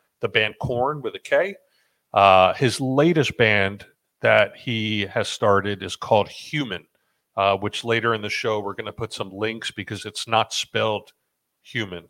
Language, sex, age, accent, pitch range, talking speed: English, male, 40-59, American, 100-120 Hz, 170 wpm